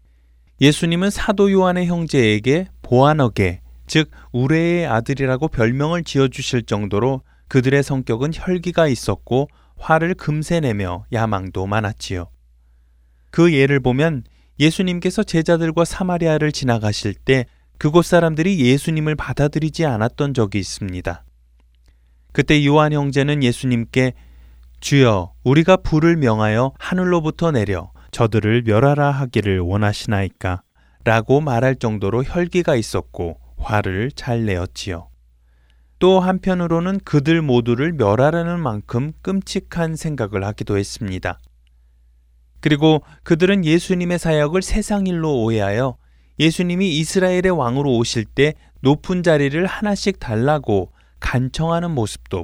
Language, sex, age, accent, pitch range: Korean, male, 20-39, native, 100-165 Hz